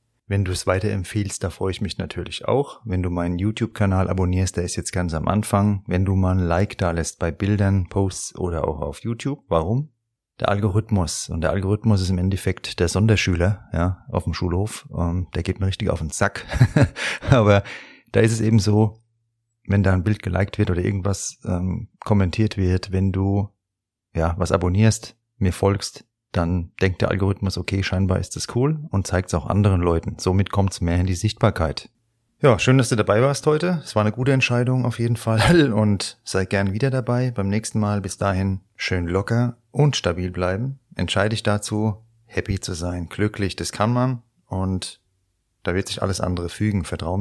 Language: German